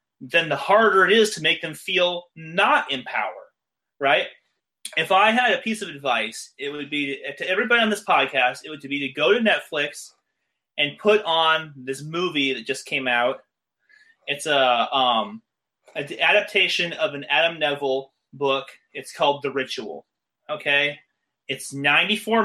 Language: English